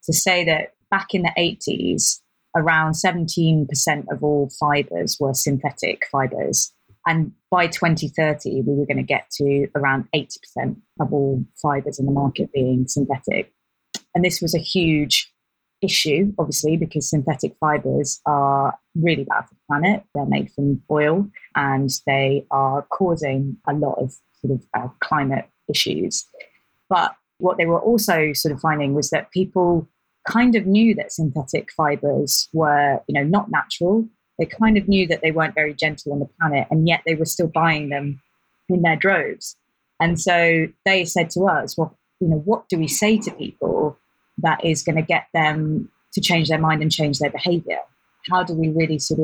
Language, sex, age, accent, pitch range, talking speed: English, female, 30-49, British, 145-180 Hz, 175 wpm